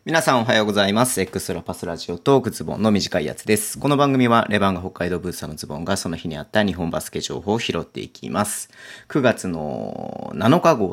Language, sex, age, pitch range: Japanese, male, 30-49, 90-115 Hz